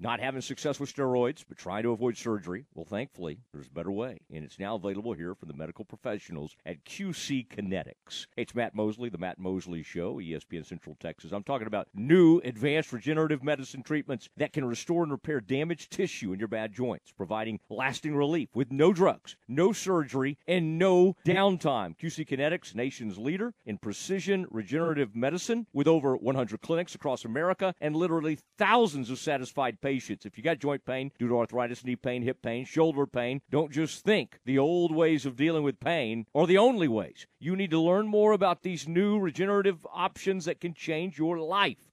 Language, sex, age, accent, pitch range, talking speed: English, male, 50-69, American, 130-190 Hz, 185 wpm